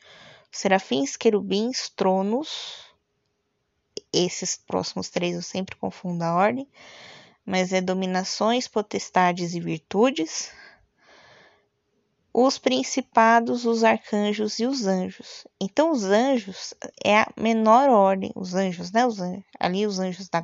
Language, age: Portuguese, 20-39